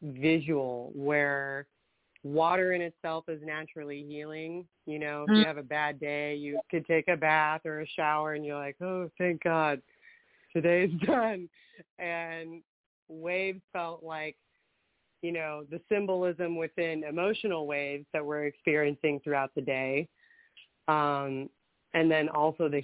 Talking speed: 140 wpm